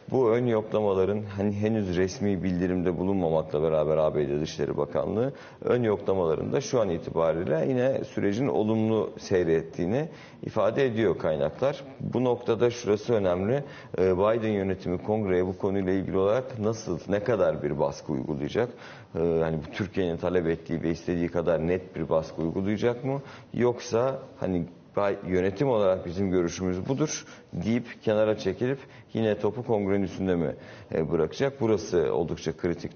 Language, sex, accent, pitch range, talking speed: Turkish, male, native, 85-115 Hz, 130 wpm